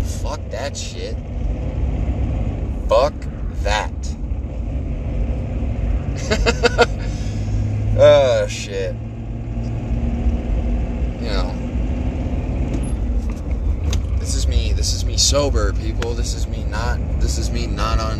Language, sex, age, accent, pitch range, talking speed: English, male, 20-39, American, 70-85 Hz, 85 wpm